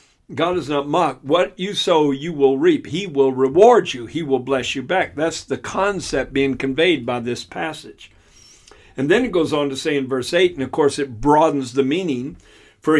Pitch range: 130-175 Hz